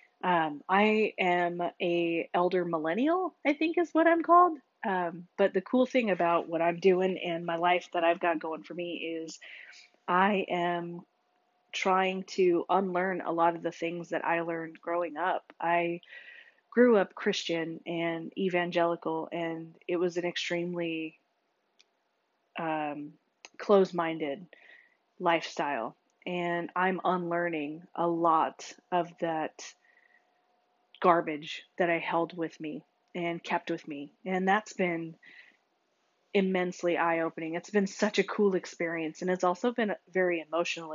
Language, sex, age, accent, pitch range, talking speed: English, female, 20-39, American, 165-185 Hz, 140 wpm